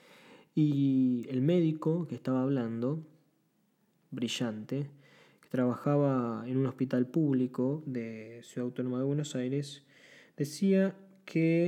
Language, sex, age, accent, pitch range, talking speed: Spanish, male, 20-39, Argentinian, 125-165 Hz, 110 wpm